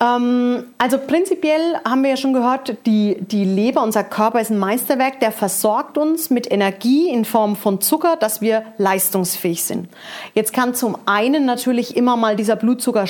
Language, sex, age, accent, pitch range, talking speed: German, female, 40-59, German, 205-255 Hz, 170 wpm